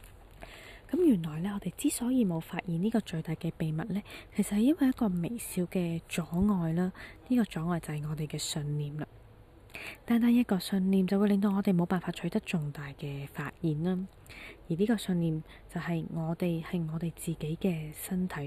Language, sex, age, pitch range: Chinese, female, 20-39, 150-200 Hz